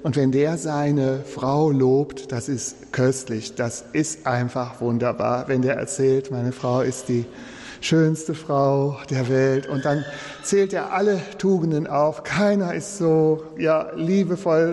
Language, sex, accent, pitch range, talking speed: German, male, German, 130-185 Hz, 145 wpm